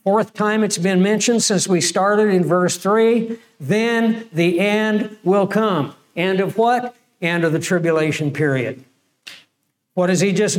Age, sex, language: 60-79, male, English